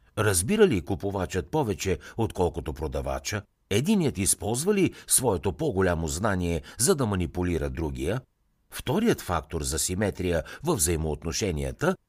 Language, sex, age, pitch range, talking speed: Bulgarian, male, 60-79, 80-115 Hz, 110 wpm